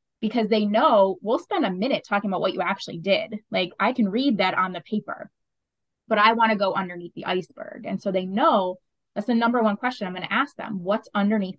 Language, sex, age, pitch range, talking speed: English, female, 20-39, 190-230 Hz, 225 wpm